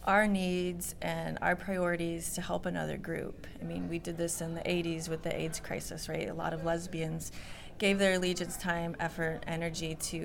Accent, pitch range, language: American, 160-180 Hz, English